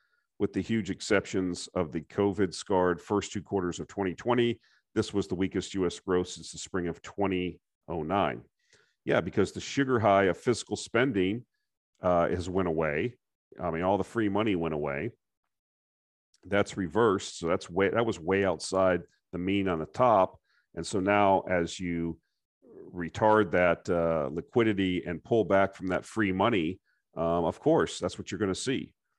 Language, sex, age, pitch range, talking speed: English, male, 40-59, 85-105 Hz, 170 wpm